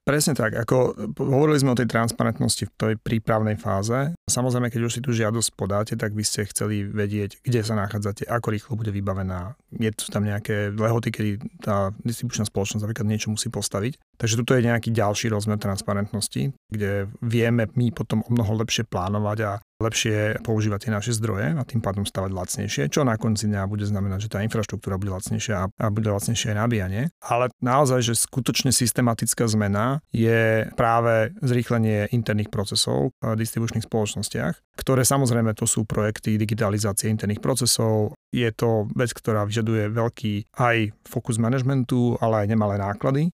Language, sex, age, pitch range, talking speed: Slovak, male, 30-49, 105-120 Hz, 165 wpm